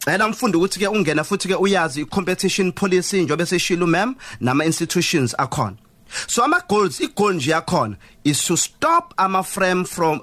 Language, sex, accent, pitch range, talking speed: English, male, South African, 150-215 Hz, 180 wpm